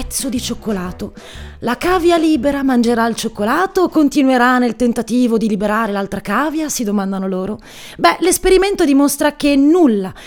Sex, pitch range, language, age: female, 225-305 Hz, Italian, 30-49